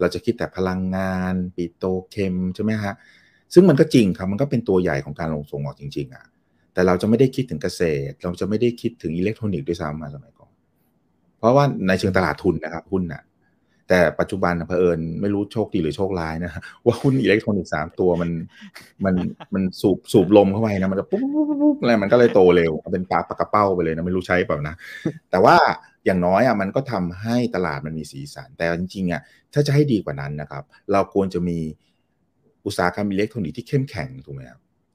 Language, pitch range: Thai, 80-105 Hz